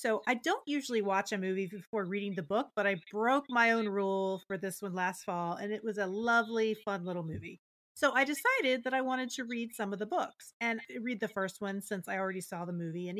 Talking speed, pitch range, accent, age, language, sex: 245 wpm, 190-235 Hz, American, 40-59, English, female